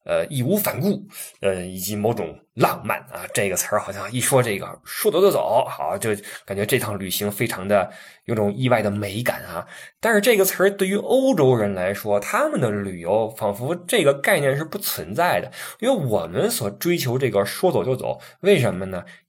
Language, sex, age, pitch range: Chinese, male, 20-39, 105-140 Hz